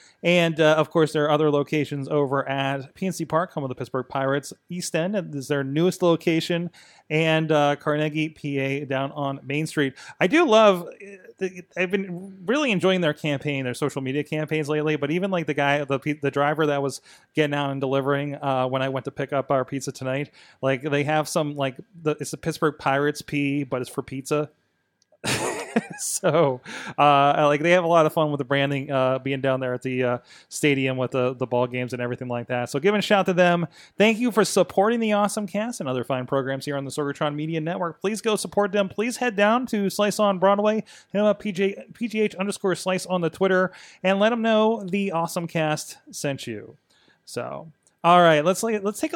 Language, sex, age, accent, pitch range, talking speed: English, male, 30-49, American, 140-185 Hz, 210 wpm